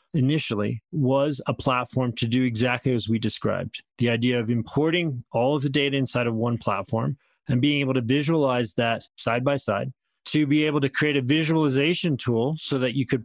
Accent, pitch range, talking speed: American, 120-145 Hz, 195 wpm